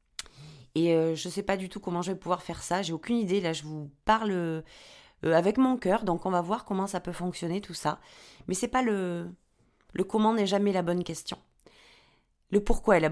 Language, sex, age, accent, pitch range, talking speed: French, female, 30-49, French, 170-210 Hz, 240 wpm